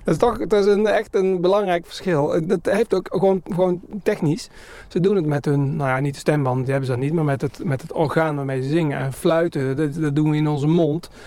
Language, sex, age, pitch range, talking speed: Dutch, male, 40-59, 135-170 Hz, 260 wpm